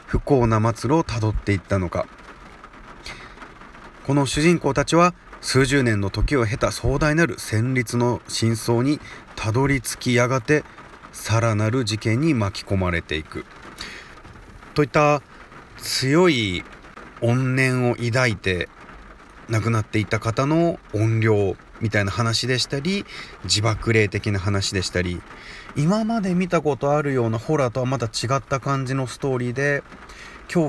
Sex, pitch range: male, 105-135 Hz